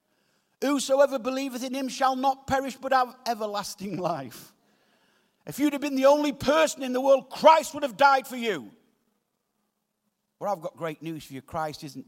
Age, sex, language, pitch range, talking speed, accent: 50-69, male, English, 190-260 Hz, 180 wpm, British